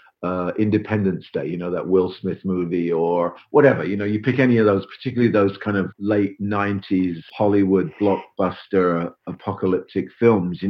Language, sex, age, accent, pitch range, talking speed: English, male, 50-69, British, 95-115 Hz, 170 wpm